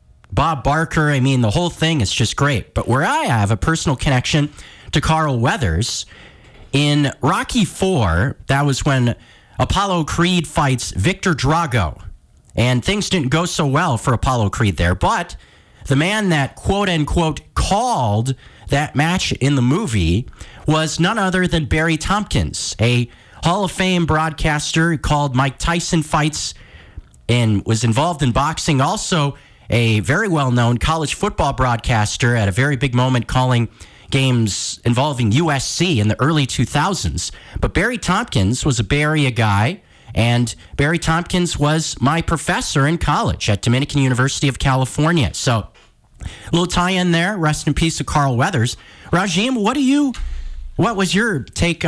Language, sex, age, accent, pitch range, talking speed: English, male, 40-59, American, 115-165 Hz, 150 wpm